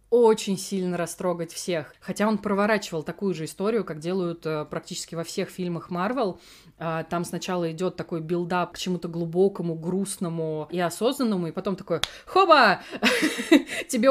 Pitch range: 170-215 Hz